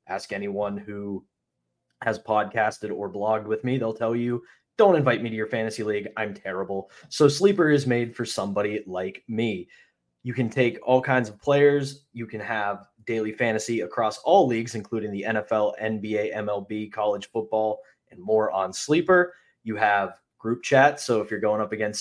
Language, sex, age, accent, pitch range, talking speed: English, male, 20-39, American, 110-130 Hz, 175 wpm